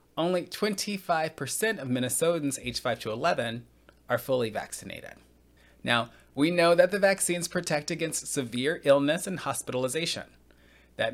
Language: English